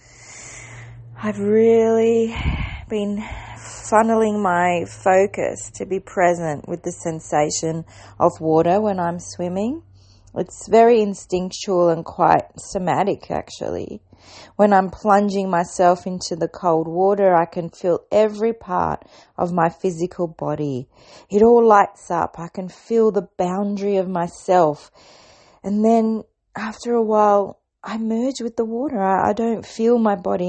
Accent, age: Australian, 30-49